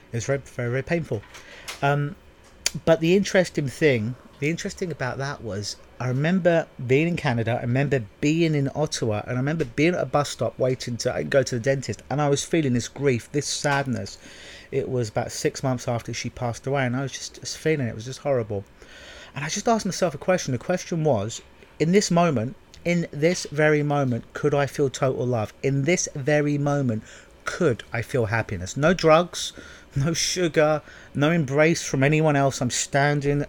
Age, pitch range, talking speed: 40-59, 125-155 Hz, 195 wpm